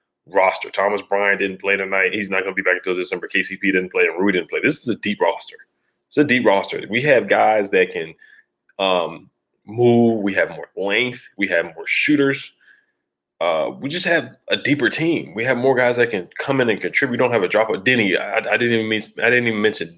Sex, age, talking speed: male, 20-39, 230 wpm